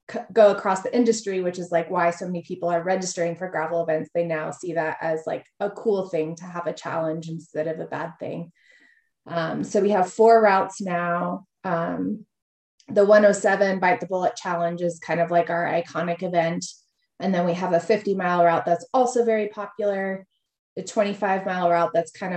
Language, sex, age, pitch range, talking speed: English, female, 20-39, 170-205 Hz, 195 wpm